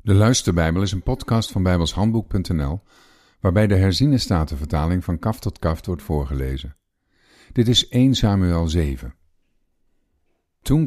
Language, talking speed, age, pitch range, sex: Dutch, 120 wpm, 50-69, 85-115 Hz, male